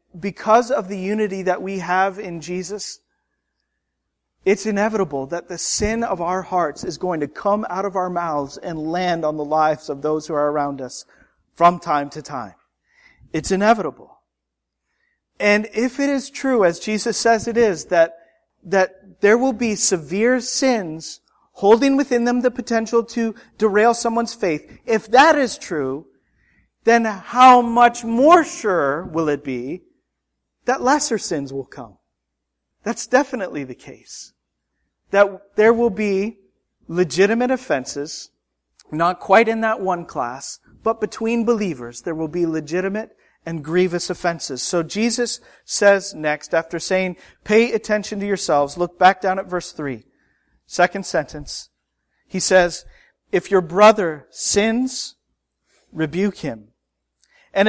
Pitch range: 160-225 Hz